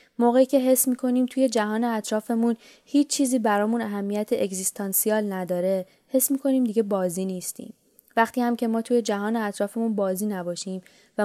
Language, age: Persian, 20-39